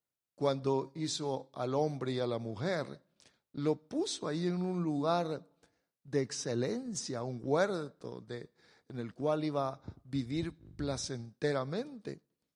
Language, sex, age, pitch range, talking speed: English, male, 50-69, 145-190 Hz, 125 wpm